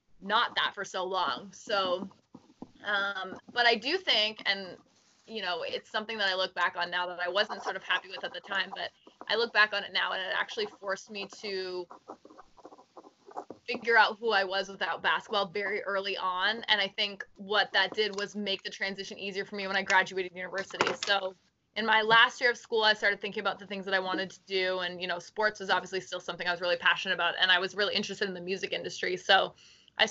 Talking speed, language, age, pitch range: 225 wpm, English, 20-39, 185-215 Hz